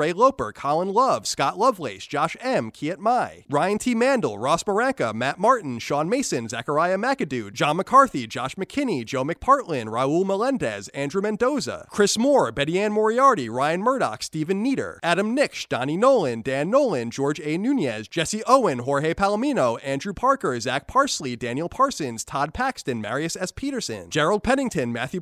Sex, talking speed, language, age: male, 160 wpm, English, 30-49